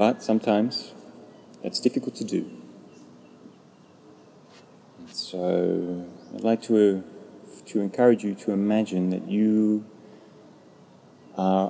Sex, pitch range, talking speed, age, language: male, 90-110 Hz, 90 wpm, 30-49, English